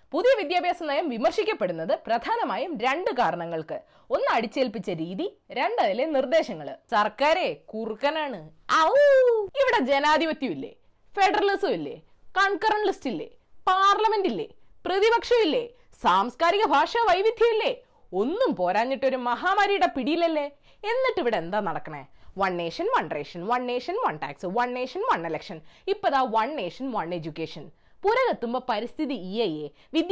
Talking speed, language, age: 105 wpm, Malayalam, 20-39